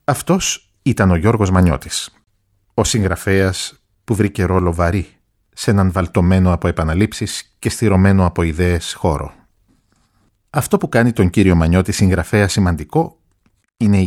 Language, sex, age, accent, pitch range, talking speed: Greek, male, 50-69, native, 90-105 Hz, 130 wpm